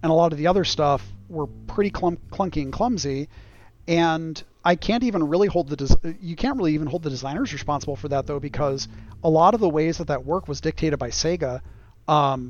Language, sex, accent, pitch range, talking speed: Polish, male, American, 135-175 Hz, 210 wpm